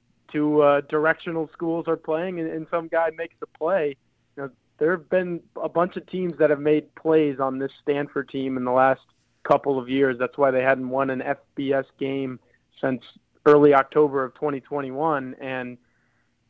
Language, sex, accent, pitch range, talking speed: English, male, American, 130-145 Hz, 180 wpm